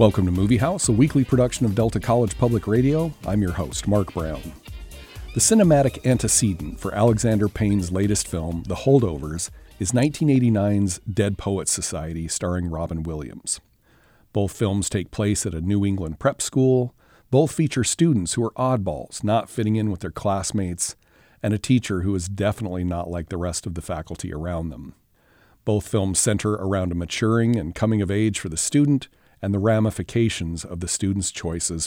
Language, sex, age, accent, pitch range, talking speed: English, male, 50-69, American, 90-115 Hz, 175 wpm